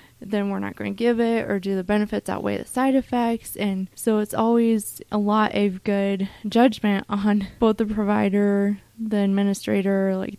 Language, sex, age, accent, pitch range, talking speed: English, female, 20-39, American, 185-205 Hz, 180 wpm